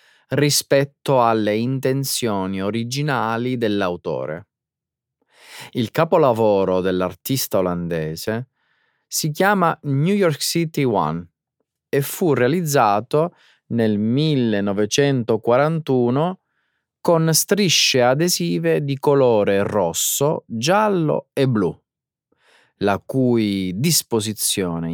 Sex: male